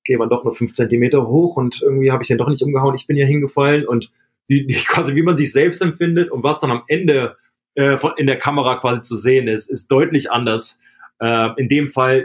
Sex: male